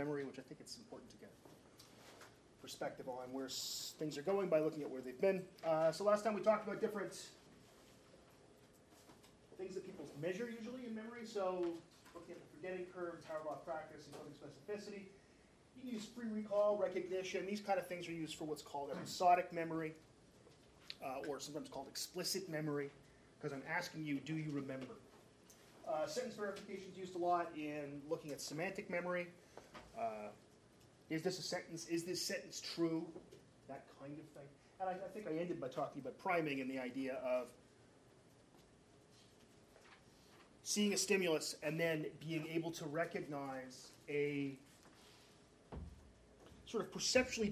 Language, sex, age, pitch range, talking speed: English, male, 30-49, 145-185 Hz, 165 wpm